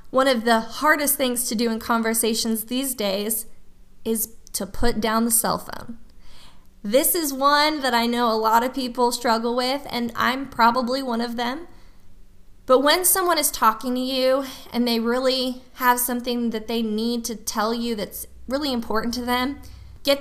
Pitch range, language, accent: 220-255 Hz, English, American